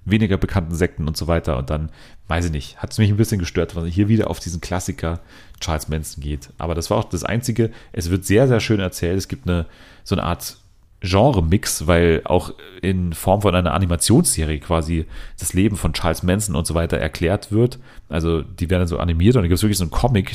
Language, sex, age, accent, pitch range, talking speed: German, male, 30-49, German, 85-100 Hz, 220 wpm